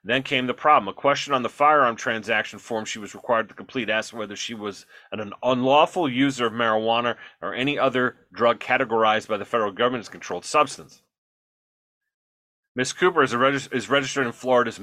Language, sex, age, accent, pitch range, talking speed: English, male, 30-49, American, 110-135 Hz, 185 wpm